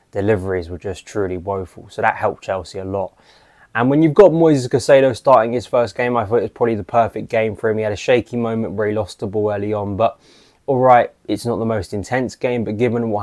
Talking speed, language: 245 wpm, English